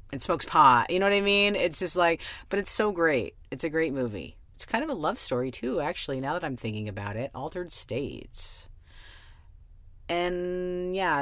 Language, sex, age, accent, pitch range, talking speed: English, female, 40-59, American, 105-150 Hz, 200 wpm